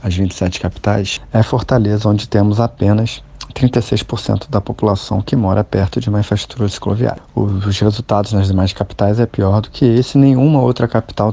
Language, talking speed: Portuguese, 165 wpm